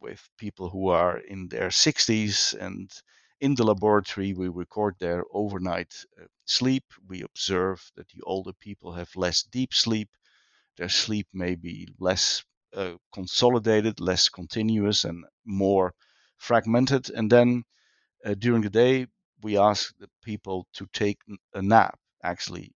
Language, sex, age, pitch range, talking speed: English, male, 50-69, 95-110 Hz, 140 wpm